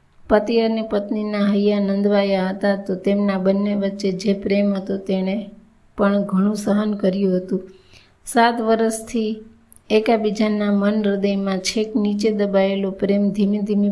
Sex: female